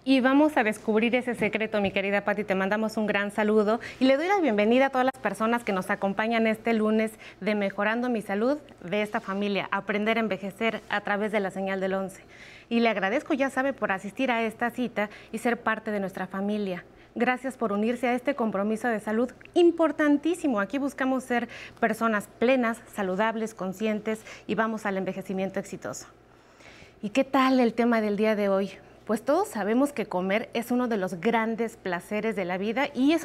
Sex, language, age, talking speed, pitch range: female, Spanish, 30-49, 195 wpm, 205-250 Hz